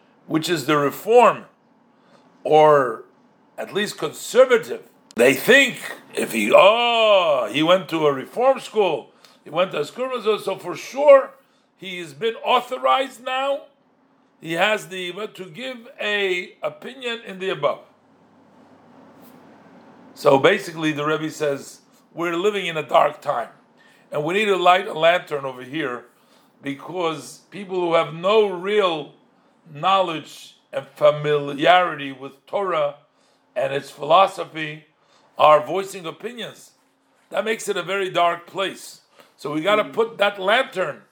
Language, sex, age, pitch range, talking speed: English, male, 50-69, 155-230 Hz, 135 wpm